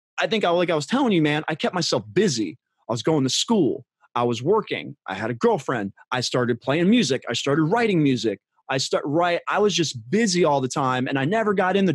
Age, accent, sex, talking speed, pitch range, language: 20-39, American, male, 240 wpm, 130-190 Hz, English